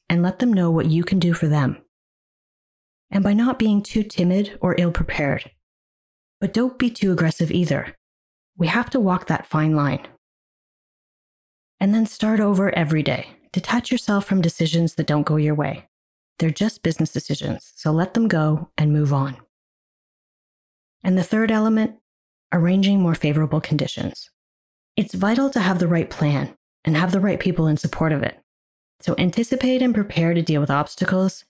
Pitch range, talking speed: 150-195 Hz, 170 wpm